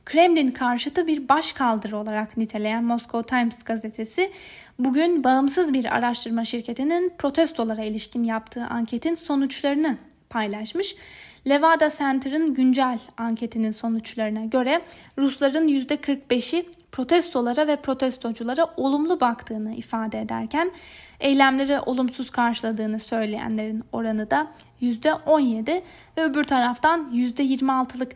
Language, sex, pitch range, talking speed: Turkish, female, 225-290 Hz, 100 wpm